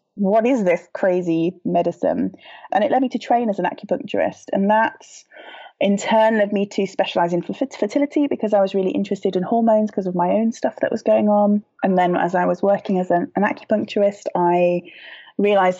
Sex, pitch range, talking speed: female, 185-230 Hz, 195 wpm